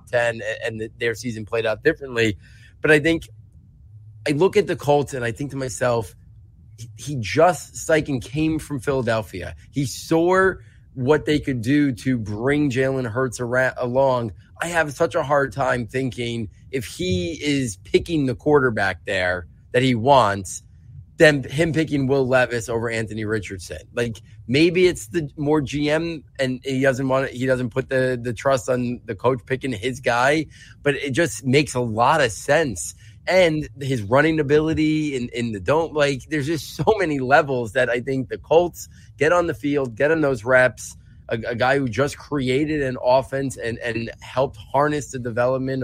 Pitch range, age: 115-145 Hz, 20-39